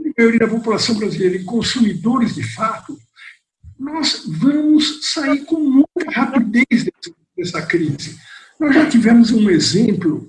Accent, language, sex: Brazilian, Portuguese, male